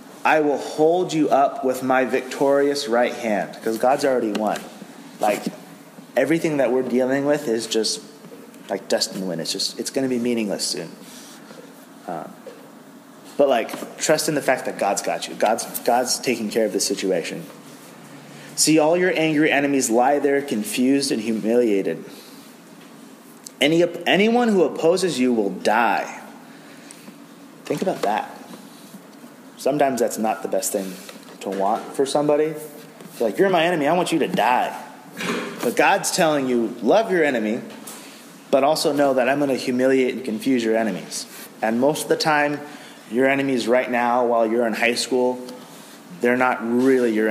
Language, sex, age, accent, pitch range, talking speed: English, male, 30-49, American, 115-150 Hz, 160 wpm